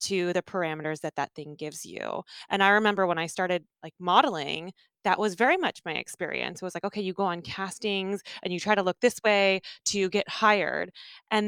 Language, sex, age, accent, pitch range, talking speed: English, female, 20-39, American, 180-225 Hz, 215 wpm